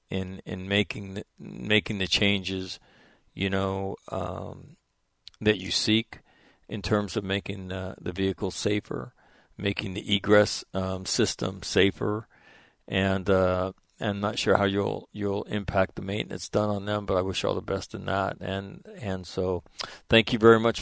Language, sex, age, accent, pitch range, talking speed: English, male, 50-69, American, 95-110 Hz, 160 wpm